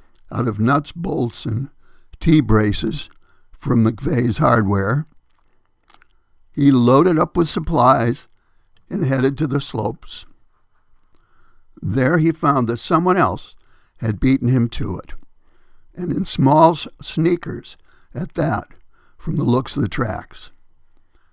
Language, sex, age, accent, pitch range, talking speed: English, male, 60-79, American, 100-145 Hz, 120 wpm